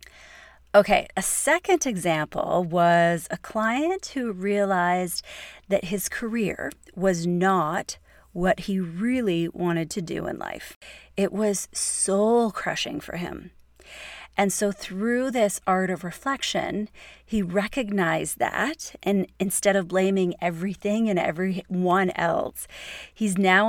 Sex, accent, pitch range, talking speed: female, American, 180-215 Hz, 120 wpm